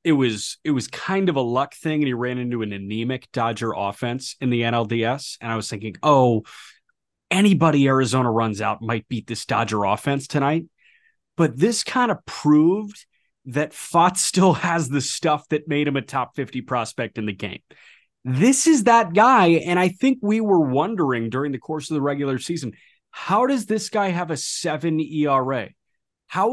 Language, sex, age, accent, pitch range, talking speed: English, male, 30-49, American, 120-170 Hz, 185 wpm